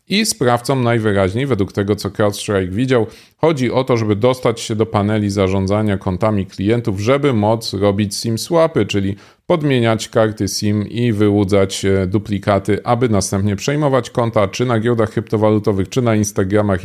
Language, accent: Polish, native